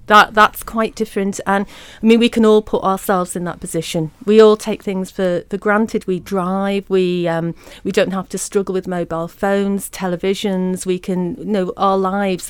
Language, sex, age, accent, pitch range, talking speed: English, female, 40-59, British, 185-220 Hz, 195 wpm